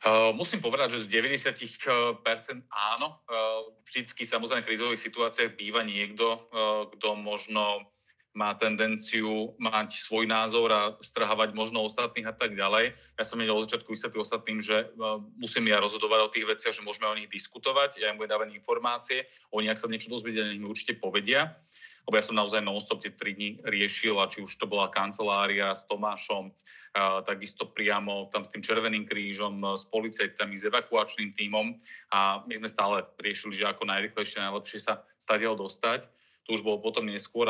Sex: male